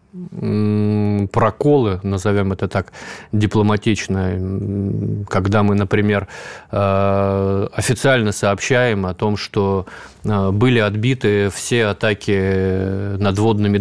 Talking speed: 80 wpm